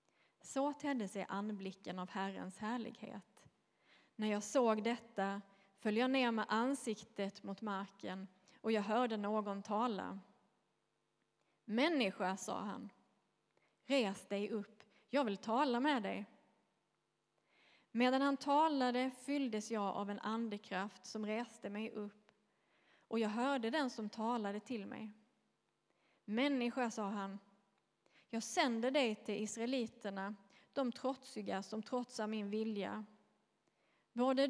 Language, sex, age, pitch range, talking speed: Swedish, female, 20-39, 200-240 Hz, 120 wpm